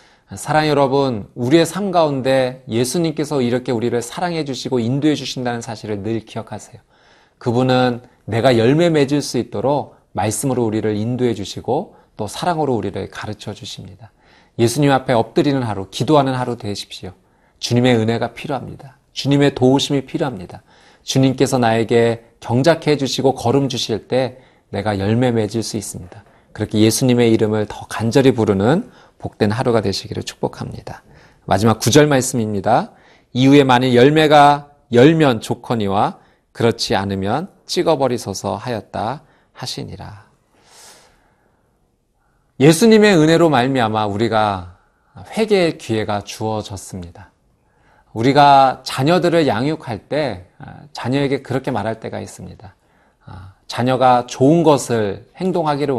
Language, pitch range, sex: Korean, 110-140 Hz, male